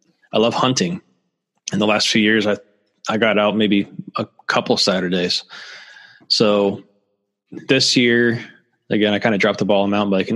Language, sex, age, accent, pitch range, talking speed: English, male, 20-39, American, 100-115 Hz, 170 wpm